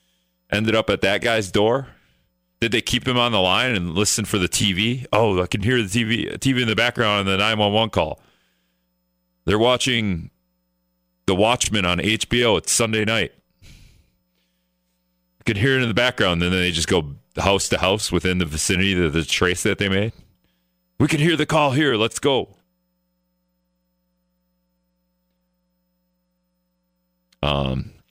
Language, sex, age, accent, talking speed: English, male, 40-59, American, 160 wpm